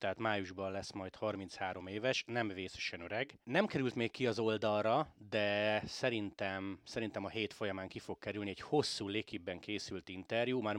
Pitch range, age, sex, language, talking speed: 100-120 Hz, 30-49, male, Hungarian, 165 wpm